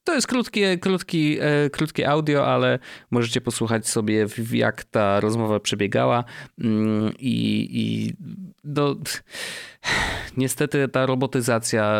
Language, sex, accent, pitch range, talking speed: Polish, male, native, 95-120 Hz, 100 wpm